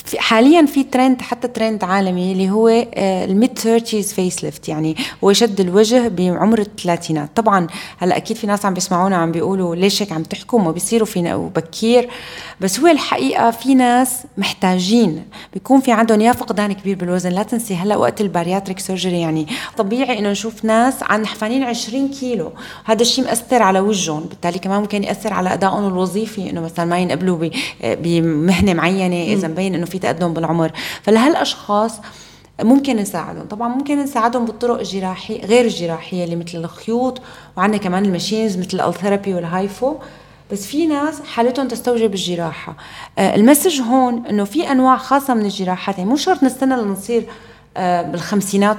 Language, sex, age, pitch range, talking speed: Arabic, female, 30-49, 185-240 Hz, 155 wpm